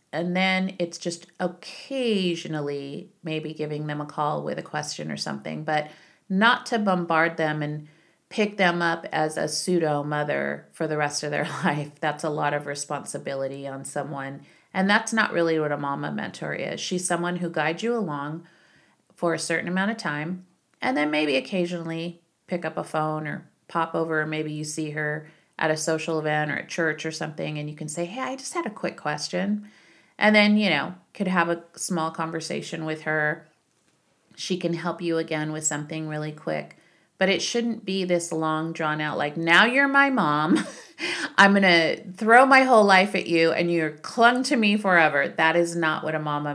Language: English